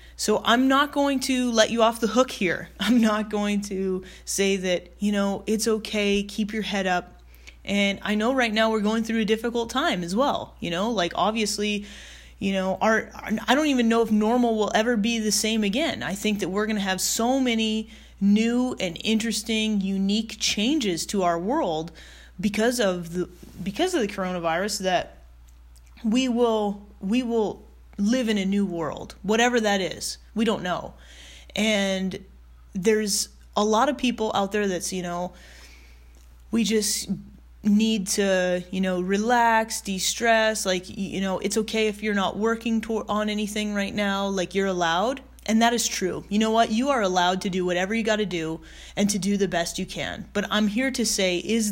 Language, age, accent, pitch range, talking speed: English, 20-39, American, 185-225 Hz, 190 wpm